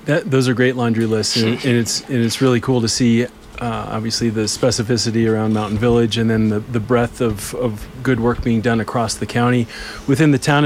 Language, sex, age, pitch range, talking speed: English, male, 30-49, 115-125 Hz, 220 wpm